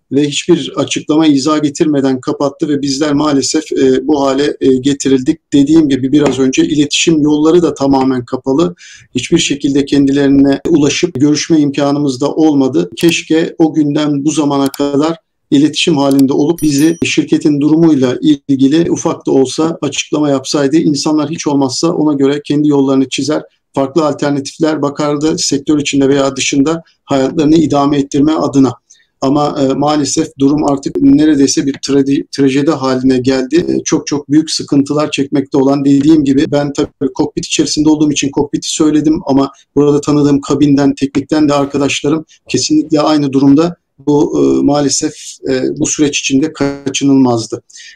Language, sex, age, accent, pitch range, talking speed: Turkish, male, 50-69, native, 140-160 Hz, 135 wpm